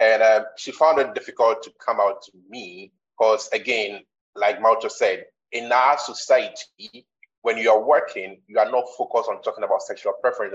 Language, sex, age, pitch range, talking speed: English, male, 30-49, 135-200 Hz, 180 wpm